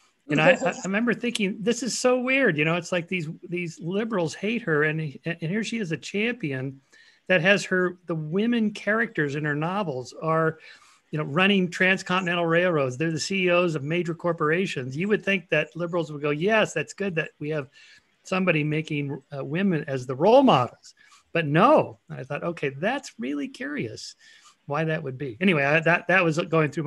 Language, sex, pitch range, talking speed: English, male, 140-185 Hz, 190 wpm